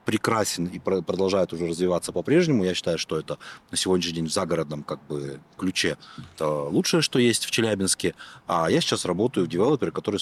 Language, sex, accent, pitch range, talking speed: Russian, male, native, 80-100 Hz, 180 wpm